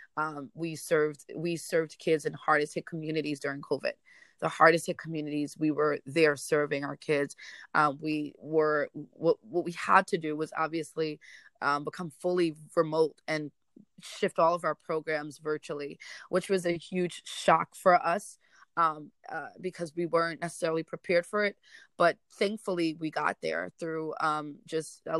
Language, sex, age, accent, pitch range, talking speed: English, female, 20-39, American, 155-175 Hz, 165 wpm